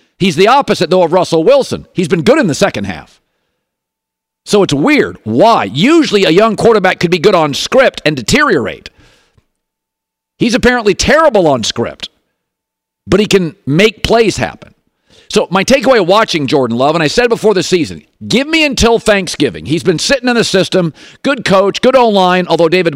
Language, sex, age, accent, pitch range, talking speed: English, male, 50-69, American, 175-225 Hz, 180 wpm